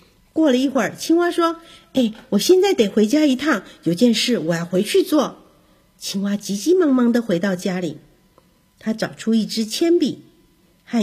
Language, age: Chinese, 50-69